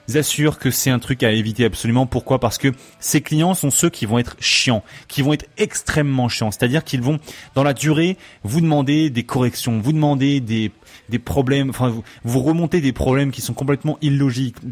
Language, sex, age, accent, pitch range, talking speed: French, male, 30-49, French, 120-150 Hz, 200 wpm